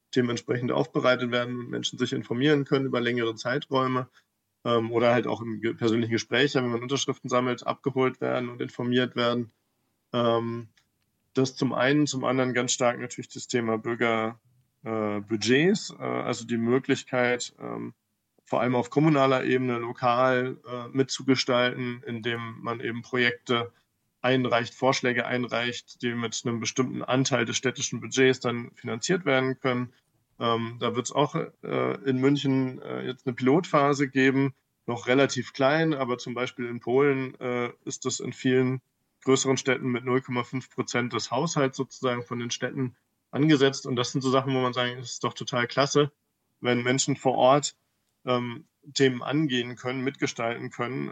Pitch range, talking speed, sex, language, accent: 120-130 Hz, 155 wpm, male, German, German